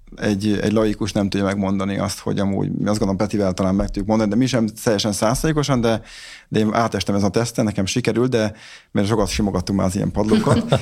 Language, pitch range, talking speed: Hungarian, 105-120 Hz, 210 wpm